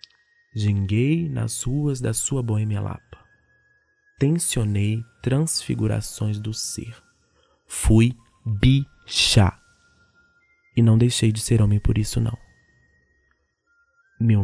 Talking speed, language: 90 wpm, Portuguese